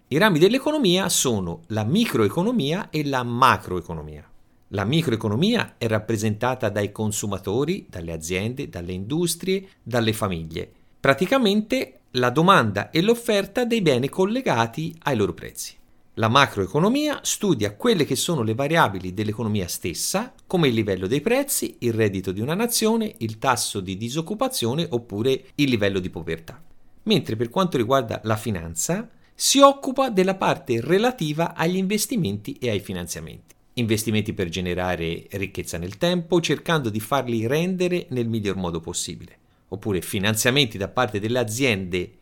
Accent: native